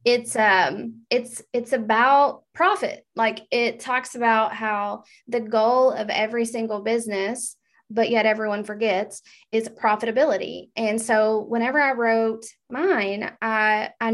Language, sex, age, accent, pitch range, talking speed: English, female, 20-39, American, 205-245 Hz, 130 wpm